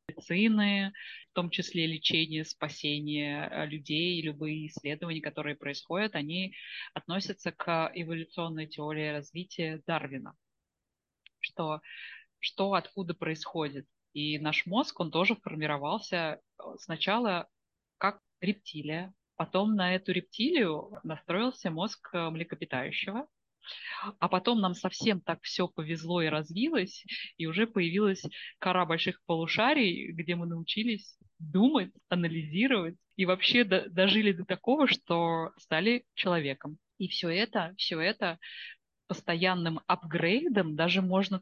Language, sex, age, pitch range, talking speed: Russian, female, 20-39, 155-195 Hz, 105 wpm